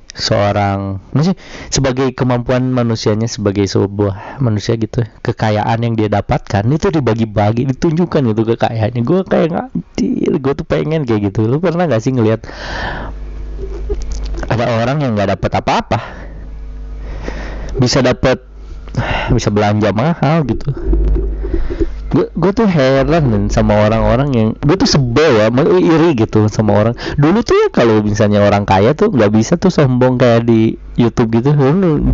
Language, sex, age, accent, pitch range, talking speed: Indonesian, male, 20-39, native, 110-150 Hz, 135 wpm